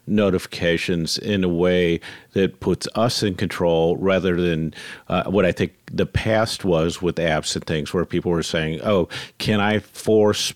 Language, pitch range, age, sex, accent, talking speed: English, 85-105 Hz, 50-69, male, American, 170 wpm